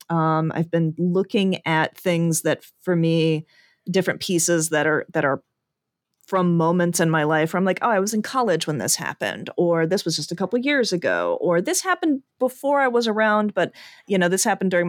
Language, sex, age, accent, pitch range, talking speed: English, female, 30-49, American, 155-190 Hz, 210 wpm